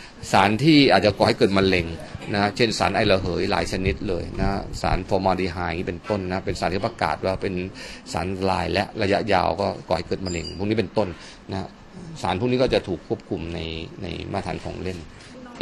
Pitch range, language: 90-105 Hz, Thai